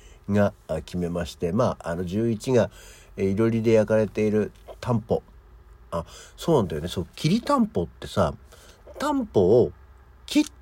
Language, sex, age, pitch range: Japanese, male, 60-79, 85-110 Hz